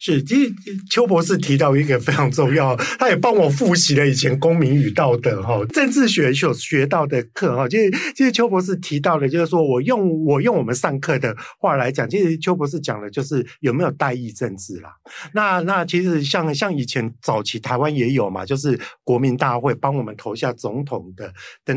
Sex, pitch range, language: male, 125-175 Hz, Chinese